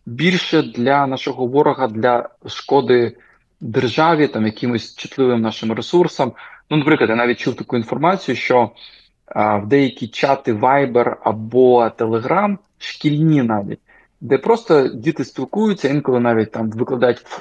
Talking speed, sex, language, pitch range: 130 wpm, male, Ukrainian, 115-150 Hz